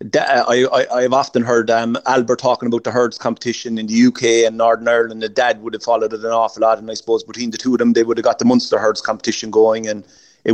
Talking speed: 260 wpm